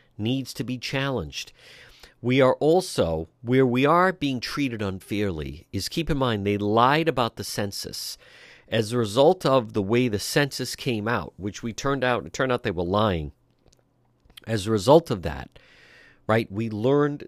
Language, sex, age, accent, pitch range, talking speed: English, male, 50-69, American, 100-130 Hz, 175 wpm